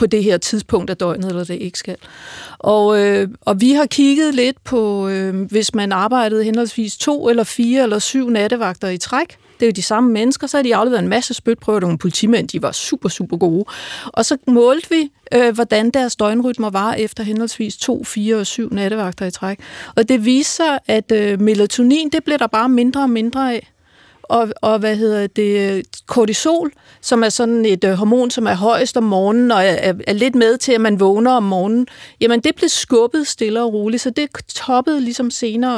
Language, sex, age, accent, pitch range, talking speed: Danish, female, 40-59, native, 210-255 Hz, 205 wpm